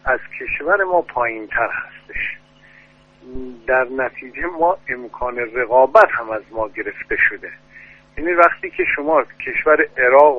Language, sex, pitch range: Persian, male, 130-185 Hz